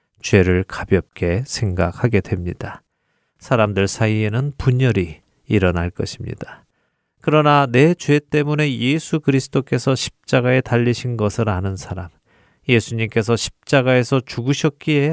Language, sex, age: Korean, male, 40-59